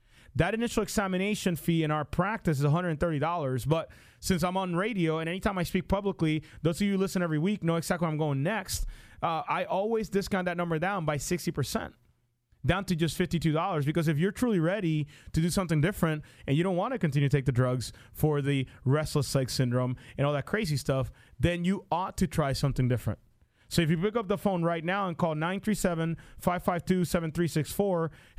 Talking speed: 200 wpm